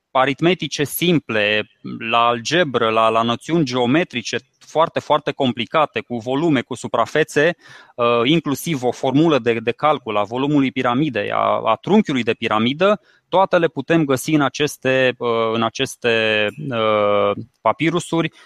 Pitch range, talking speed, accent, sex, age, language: 120-165 Hz, 125 wpm, native, male, 20-39, Romanian